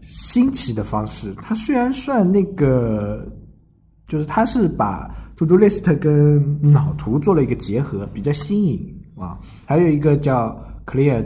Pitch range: 105-160 Hz